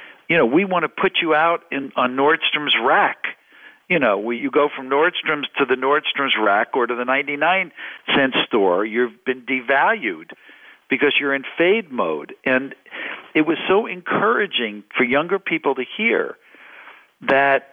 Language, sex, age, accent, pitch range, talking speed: English, male, 60-79, American, 125-155 Hz, 160 wpm